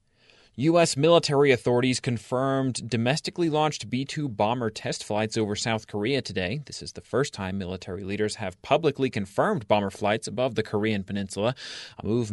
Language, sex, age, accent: English, male, 30-49, American